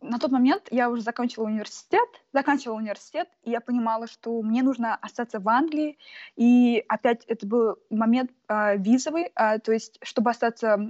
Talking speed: 165 wpm